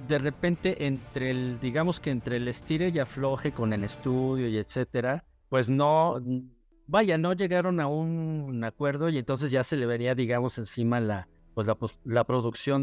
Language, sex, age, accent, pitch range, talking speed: Spanish, male, 50-69, Mexican, 115-150 Hz, 180 wpm